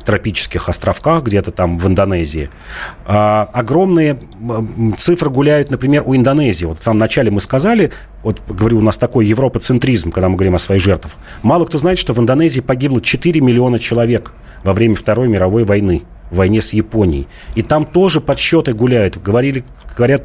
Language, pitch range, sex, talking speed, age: Russian, 105-135 Hz, male, 170 wpm, 40-59